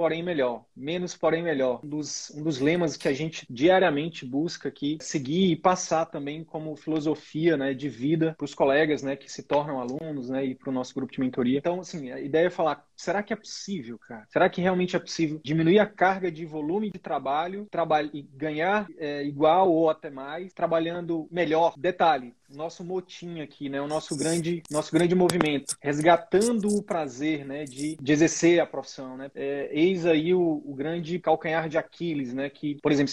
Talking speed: 190 wpm